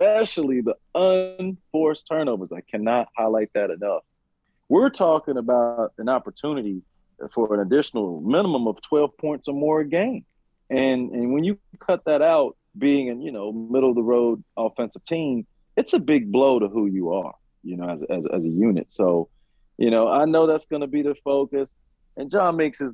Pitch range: 105-135 Hz